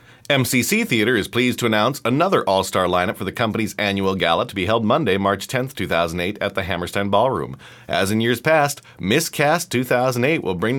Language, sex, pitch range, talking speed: English, male, 95-120 Hz, 190 wpm